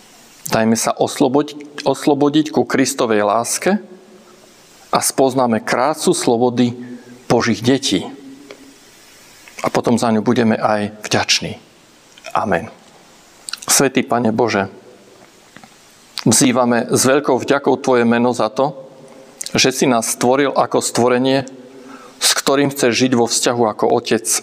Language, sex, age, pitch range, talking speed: Slovak, male, 40-59, 120-145 Hz, 115 wpm